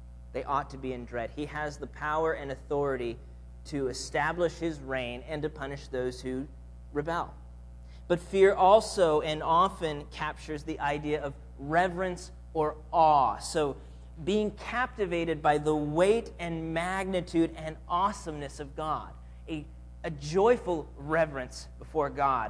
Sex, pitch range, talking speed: male, 110-165 Hz, 140 wpm